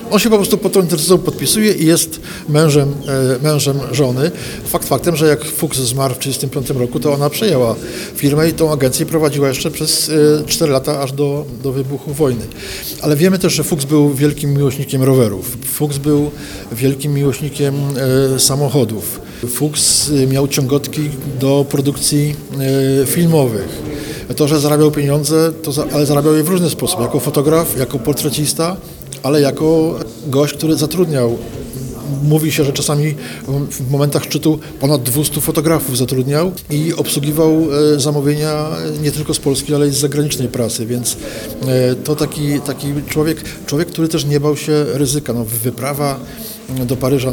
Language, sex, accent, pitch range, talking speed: Polish, male, native, 135-155 Hz, 150 wpm